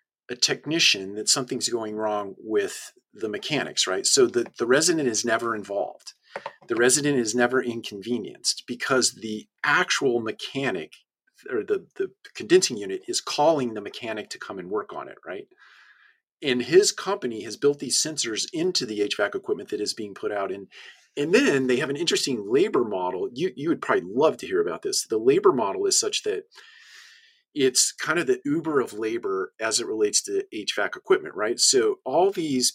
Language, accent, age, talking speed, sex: English, American, 40-59, 180 wpm, male